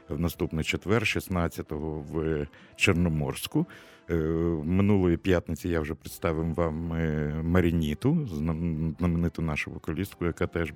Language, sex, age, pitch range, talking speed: Russian, male, 50-69, 80-100 Hz, 100 wpm